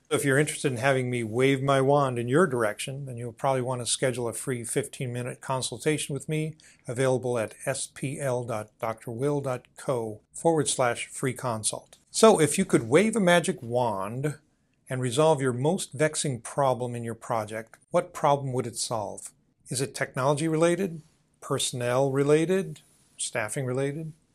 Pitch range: 120-145 Hz